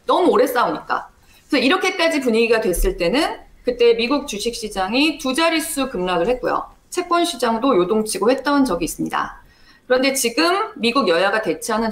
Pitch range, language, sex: 200-300 Hz, Korean, female